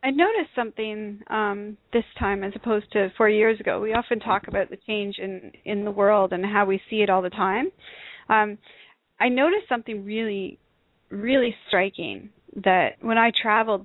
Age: 30-49